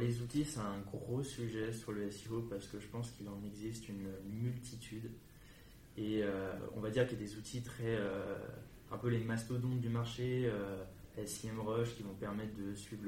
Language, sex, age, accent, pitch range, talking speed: French, male, 20-39, French, 105-120 Hz, 195 wpm